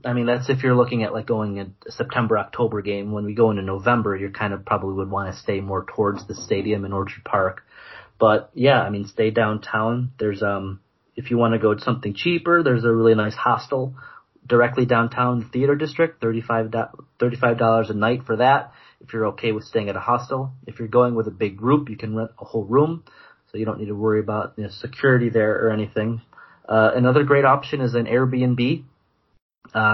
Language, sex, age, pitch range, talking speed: English, male, 30-49, 110-130 Hz, 210 wpm